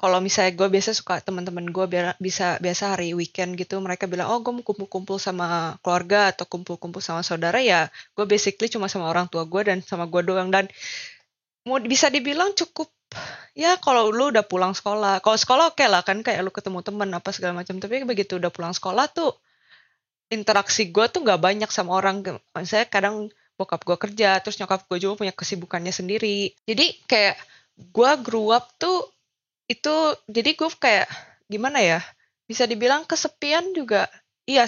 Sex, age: female, 20-39